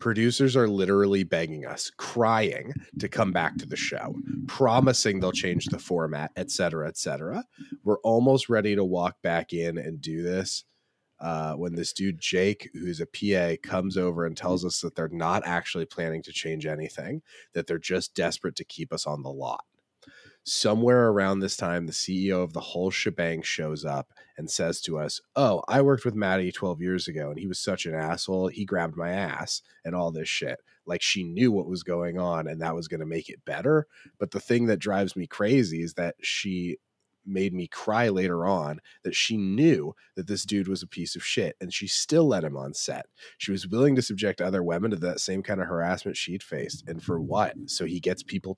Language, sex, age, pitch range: English, male, 30-49, 85-100 Hz